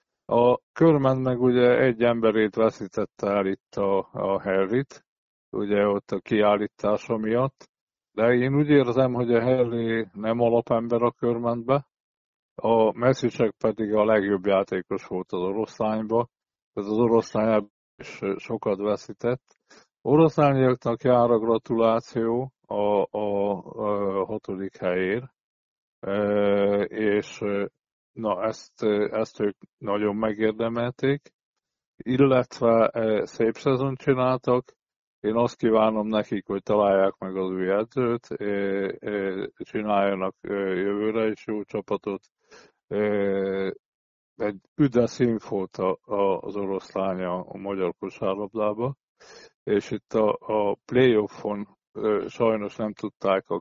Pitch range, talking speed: 100-120 Hz, 115 wpm